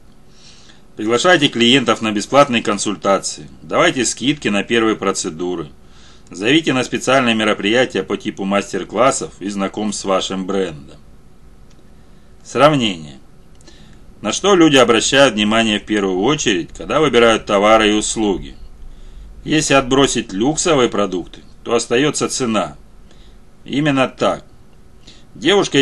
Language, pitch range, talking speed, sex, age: Russian, 100-120 Hz, 105 wpm, male, 40-59